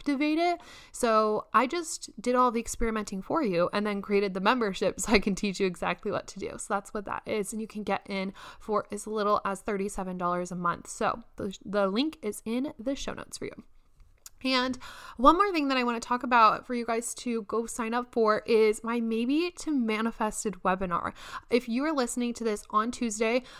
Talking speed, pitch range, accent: 215 wpm, 200-250 Hz, American